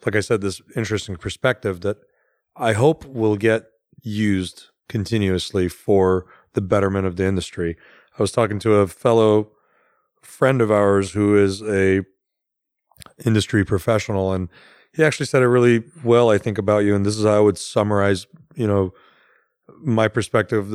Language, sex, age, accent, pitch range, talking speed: English, male, 30-49, American, 100-115 Hz, 160 wpm